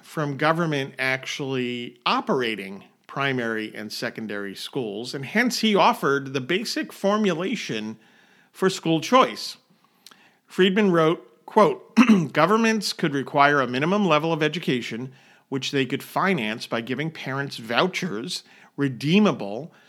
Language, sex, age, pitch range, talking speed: English, male, 50-69, 125-180 Hz, 115 wpm